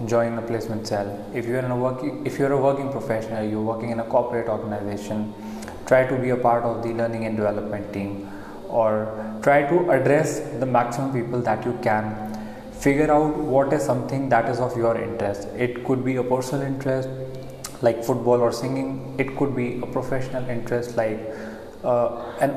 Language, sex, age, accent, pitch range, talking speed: English, male, 20-39, Indian, 115-130 Hz, 190 wpm